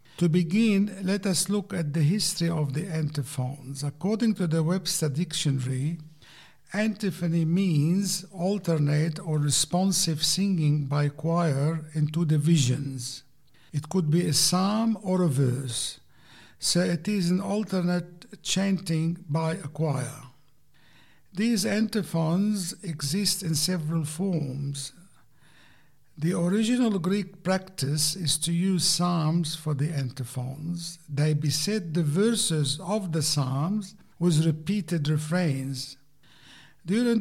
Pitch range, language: 150-180 Hz, English